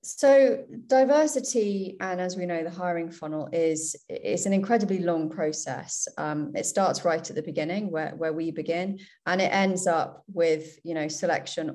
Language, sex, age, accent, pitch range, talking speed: English, female, 30-49, British, 155-180 Hz, 175 wpm